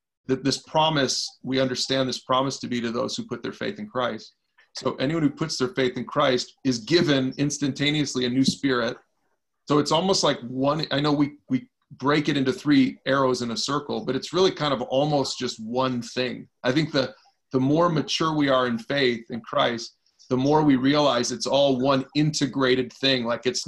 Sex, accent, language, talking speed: male, American, English, 205 wpm